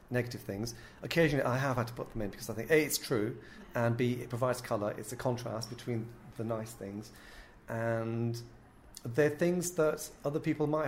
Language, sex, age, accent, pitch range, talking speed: English, male, 40-59, British, 115-140 Hz, 195 wpm